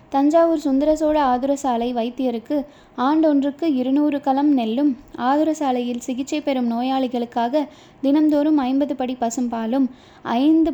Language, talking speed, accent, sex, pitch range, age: Tamil, 110 wpm, native, female, 240-290 Hz, 20-39